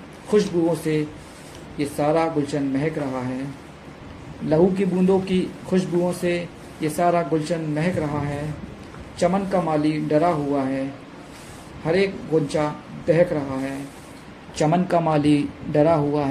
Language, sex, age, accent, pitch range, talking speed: Hindi, male, 50-69, native, 145-170 Hz, 135 wpm